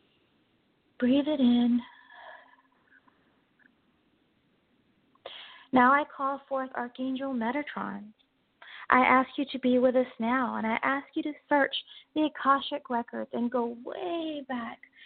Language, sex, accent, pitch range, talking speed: English, female, American, 235-280 Hz, 120 wpm